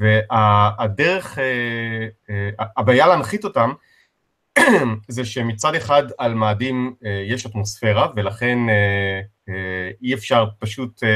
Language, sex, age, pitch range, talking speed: Hebrew, male, 30-49, 110-135 Hz, 120 wpm